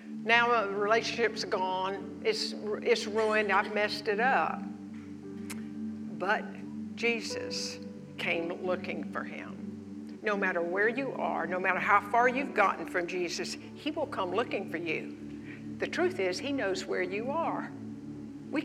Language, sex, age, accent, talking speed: English, female, 60-79, American, 145 wpm